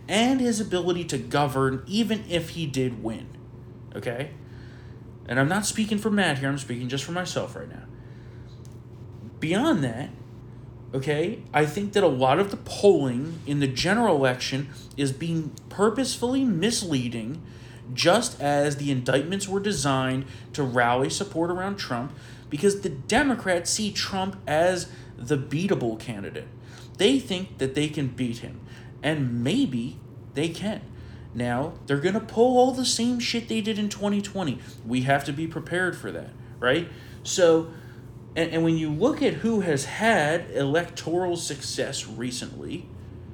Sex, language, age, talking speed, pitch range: male, English, 30-49, 150 wpm, 120-180 Hz